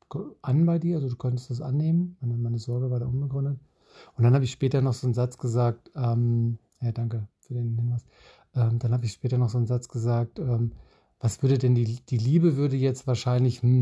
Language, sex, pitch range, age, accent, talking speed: German, male, 120-135 Hz, 50-69, German, 215 wpm